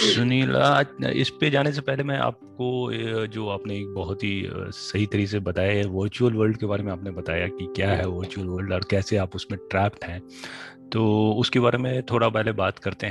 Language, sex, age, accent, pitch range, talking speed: Hindi, male, 30-49, native, 95-115 Hz, 200 wpm